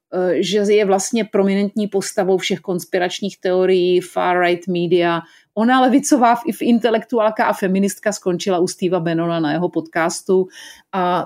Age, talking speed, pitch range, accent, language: 40-59, 130 wpm, 185-245 Hz, native, Czech